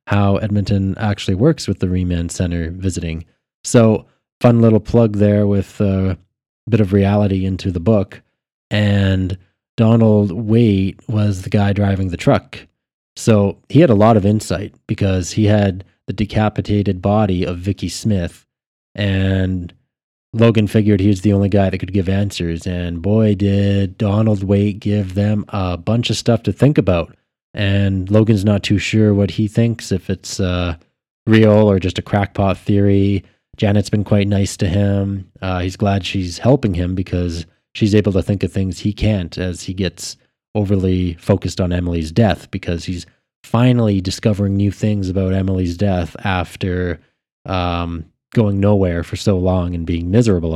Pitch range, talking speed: 90-105 Hz, 165 wpm